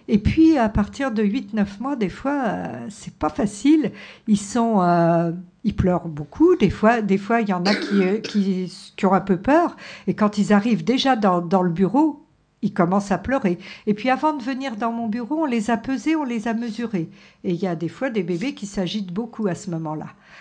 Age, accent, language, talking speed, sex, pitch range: 60-79, French, French, 230 wpm, female, 185-235 Hz